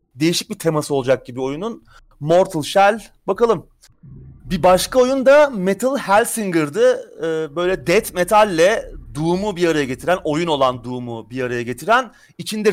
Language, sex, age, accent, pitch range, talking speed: Turkish, male, 30-49, native, 155-210 Hz, 140 wpm